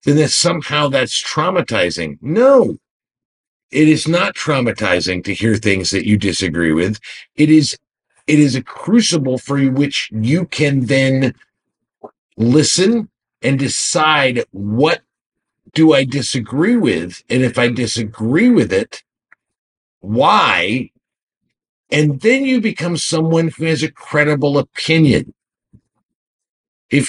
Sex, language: male, English